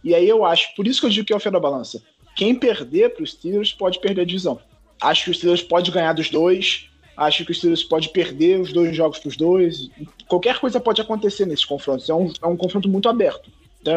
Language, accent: Portuguese, Brazilian